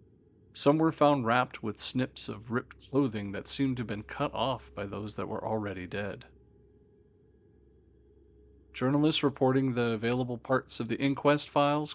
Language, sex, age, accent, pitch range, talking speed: English, male, 40-59, American, 100-130 Hz, 155 wpm